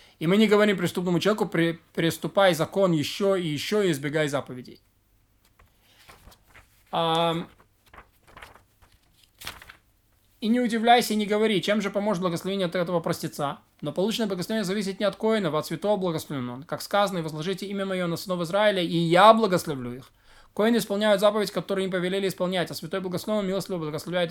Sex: male